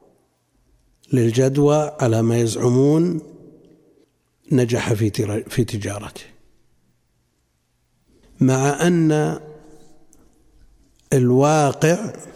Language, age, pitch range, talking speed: Arabic, 60-79, 120-150 Hz, 55 wpm